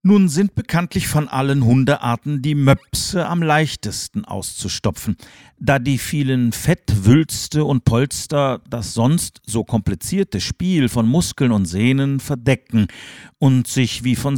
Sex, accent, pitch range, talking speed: male, German, 110-145 Hz, 130 wpm